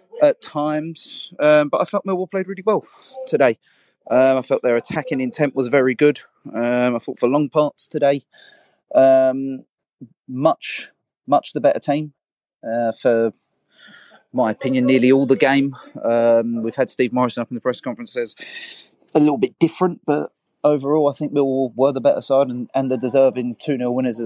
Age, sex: 30-49, male